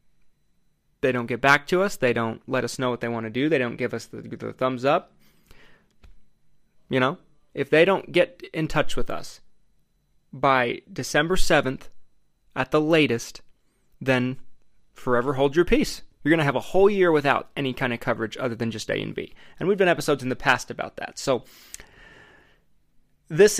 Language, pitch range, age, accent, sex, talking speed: English, 125-170 Hz, 20-39, American, male, 190 wpm